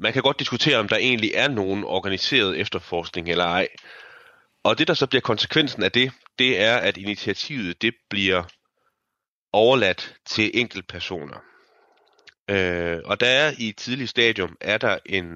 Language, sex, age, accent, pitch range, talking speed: Danish, male, 30-49, native, 85-110 Hz, 165 wpm